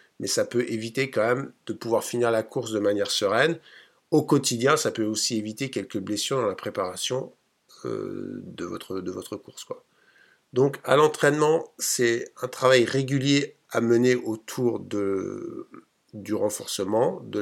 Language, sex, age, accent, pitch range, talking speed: French, male, 50-69, French, 110-140 Hz, 160 wpm